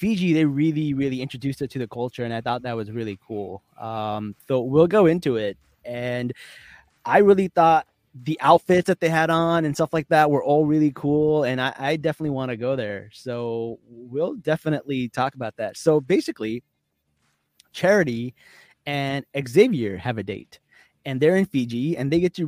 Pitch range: 125-160 Hz